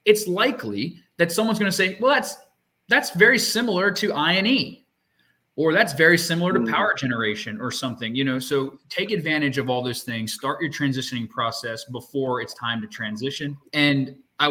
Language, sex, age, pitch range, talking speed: English, male, 20-39, 125-170 Hz, 180 wpm